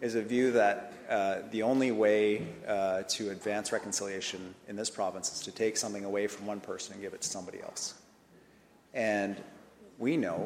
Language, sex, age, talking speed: English, male, 30-49, 185 wpm